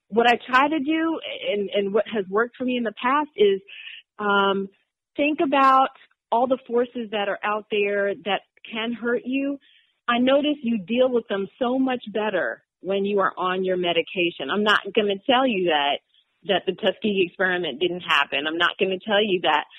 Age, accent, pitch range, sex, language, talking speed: 40-59, American, 190-250 Hz, female, English, 195 wpm